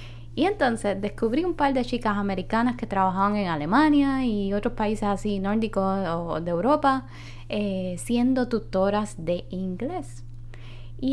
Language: Spanish